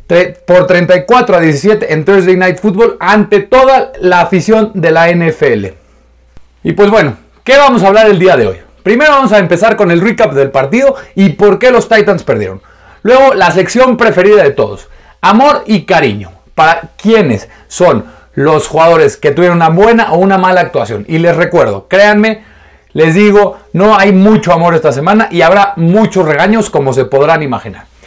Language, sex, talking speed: Spanish, male, 175 wpm